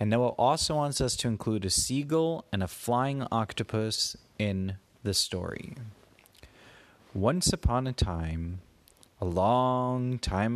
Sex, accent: male, American